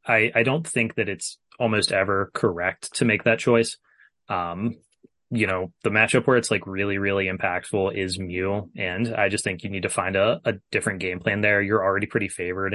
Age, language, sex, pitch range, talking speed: 20-39, English, male, 95-115 Hz, 205 wpm